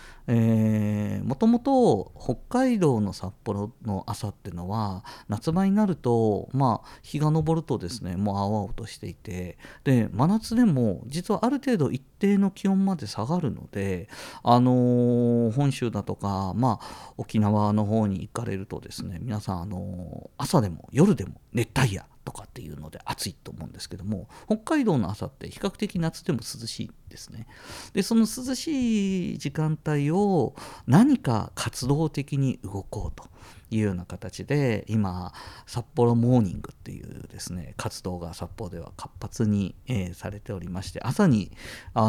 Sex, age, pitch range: male, 40-59, 100-145 Hz